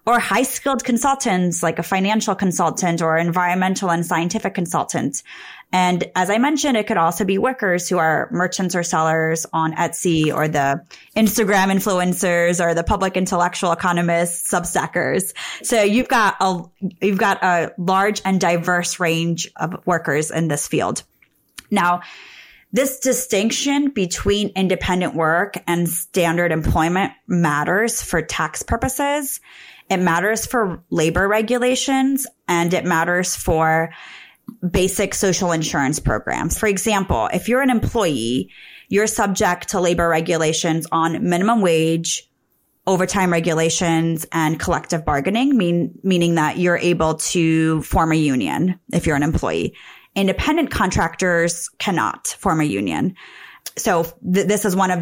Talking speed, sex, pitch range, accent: 135 wpm, female, 165-200 Hz, American